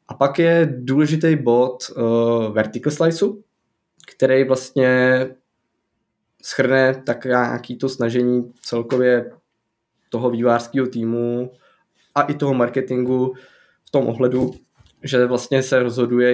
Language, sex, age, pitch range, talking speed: Czech, male, 20-39, 115-130 Hz, 105 wpm